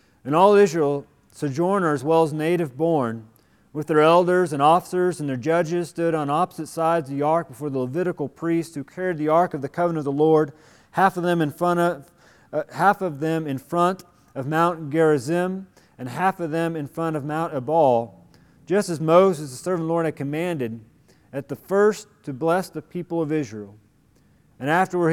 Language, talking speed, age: English, 195 wpm, 40-59